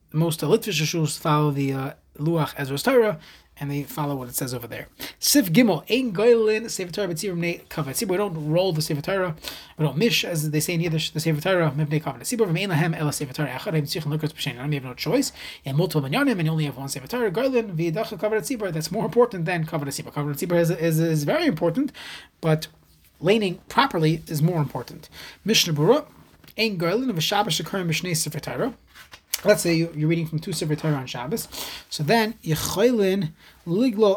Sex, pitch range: male, 150-205 Hz